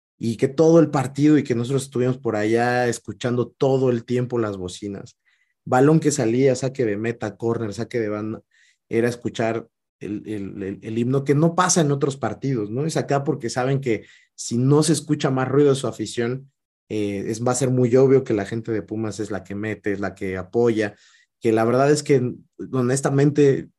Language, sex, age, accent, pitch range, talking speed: Spanish, male, 30-49, Mexican, 110-140 Hz, 200 wpm